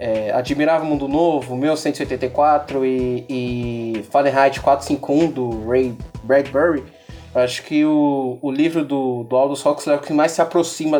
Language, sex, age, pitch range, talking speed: Portuguese, male, 20-39, 135-190 Hz, 145 wpm